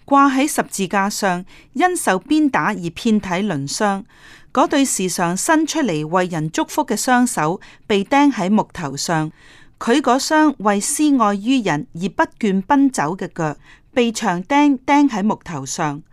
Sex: female